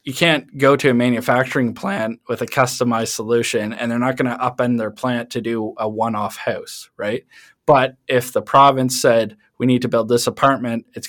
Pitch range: 115-135 Hz